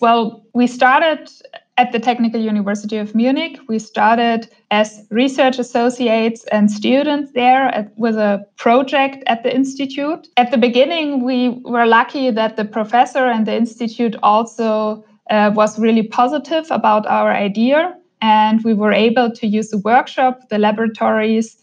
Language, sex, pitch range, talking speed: English, female, 215-255 Hz, 145 wpm